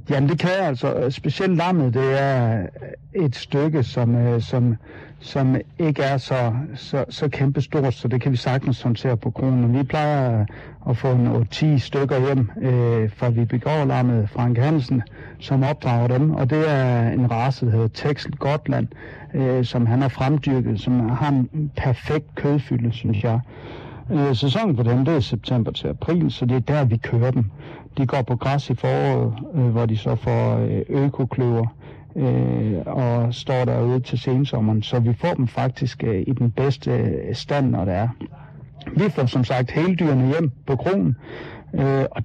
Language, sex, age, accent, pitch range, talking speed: Danish, male, 60-79, native, 120-140 Hz, 165 wpm